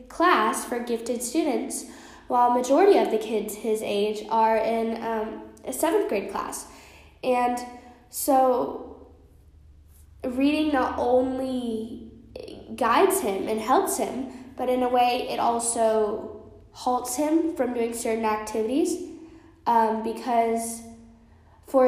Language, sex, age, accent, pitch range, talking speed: English, female, 10-29, American, 225-290 Hz, 120 wpm